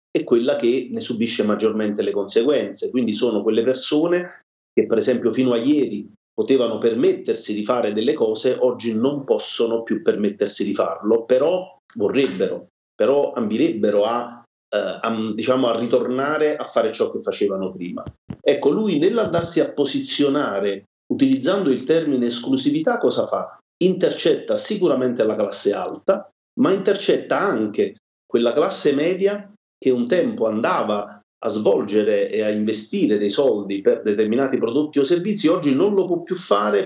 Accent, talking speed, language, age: native, 145 wpm, Italian, 40-59